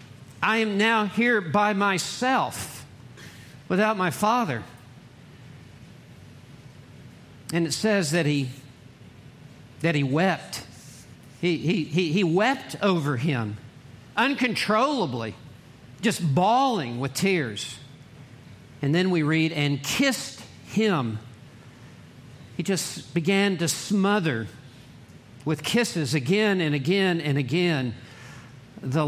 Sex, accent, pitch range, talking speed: male, American, 135-180 Hz, 100 wpm